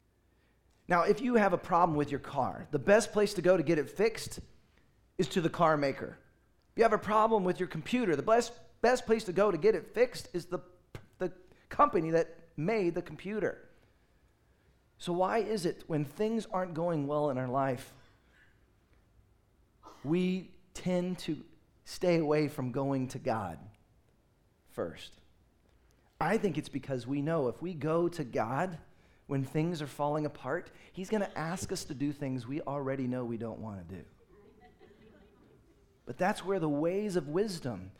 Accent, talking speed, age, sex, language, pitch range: American, 170 wpm, 40-59, male, English, 130-185 Hz